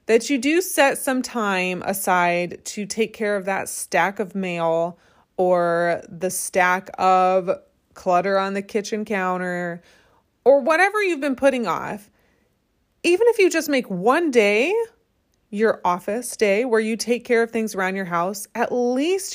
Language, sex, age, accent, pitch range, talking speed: English, female, 20-39, American, 180-255 Hz, 160 wpm